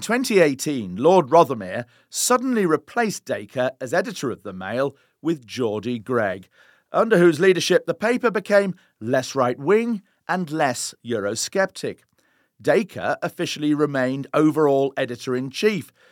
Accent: British